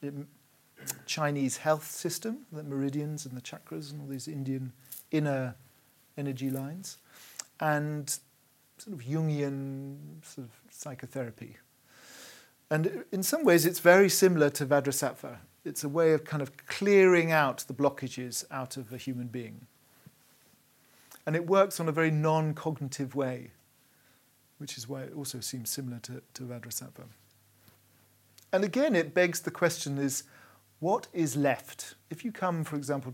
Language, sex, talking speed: English, male, 145 wpm